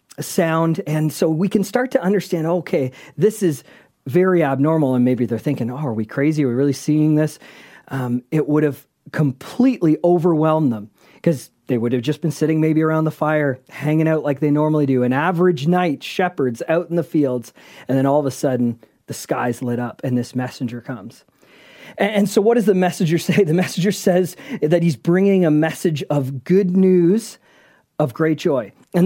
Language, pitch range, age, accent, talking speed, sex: English, 140-185 Hz, 40-59, American, 200 wpm, male